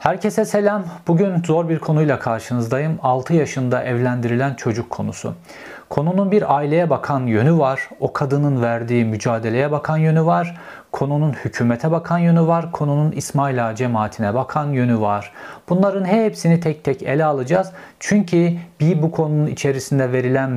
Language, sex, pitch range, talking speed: Turkish, male, 130-170 Hz, 140 wpm